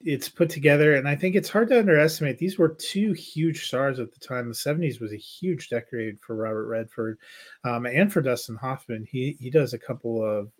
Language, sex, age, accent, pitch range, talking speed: English, male, 30-49, American, 115-135 Hz, 215 wpm